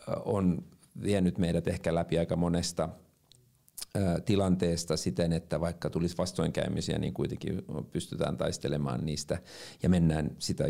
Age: 50-69